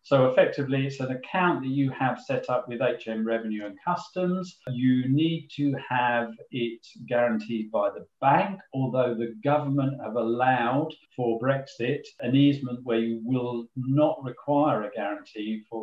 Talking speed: 155 wpm